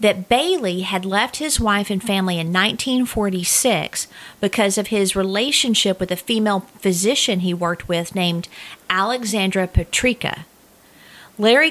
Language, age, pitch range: English, 40-59, 180-225 Hz